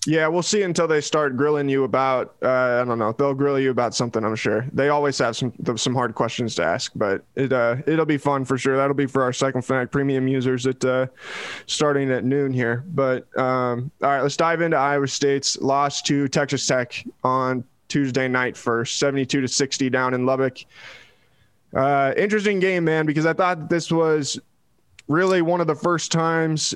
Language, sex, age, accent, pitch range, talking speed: English, male, 20-39, American, 130-150 Hz, 195 wpm